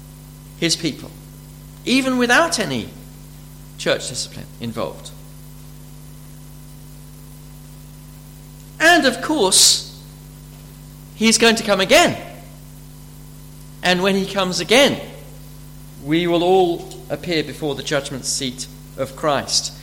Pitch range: 145-195 Hz